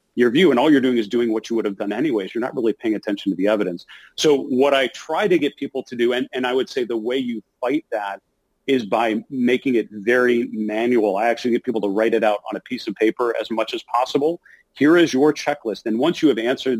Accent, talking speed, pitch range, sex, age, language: American, 260 wpm, 110-130 Hz, male, 40-59, English